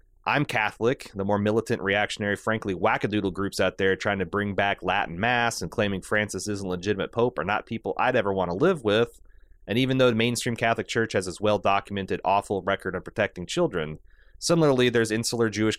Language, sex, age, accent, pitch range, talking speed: English, male, 30-49, American, 95-115 Hz, 200 wpm